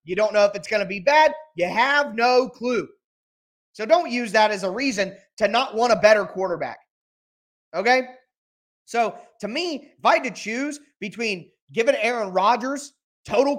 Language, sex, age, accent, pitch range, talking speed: English, male, 30-49, American, 205-280 Hz, 175 wpm